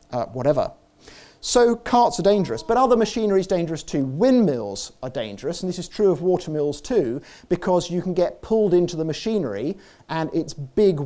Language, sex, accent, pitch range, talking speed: English, male, British, 145-190 Hz, 180 wpm